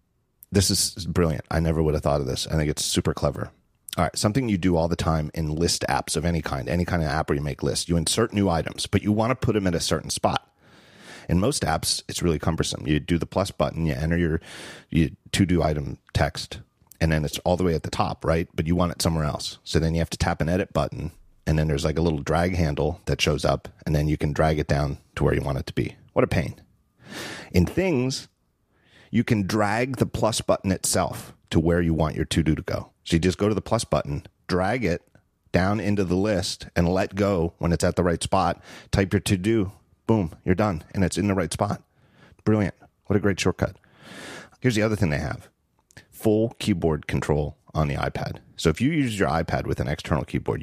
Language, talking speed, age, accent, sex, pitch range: English, 240 wpm, 40-59, American, male, 80-105 Hz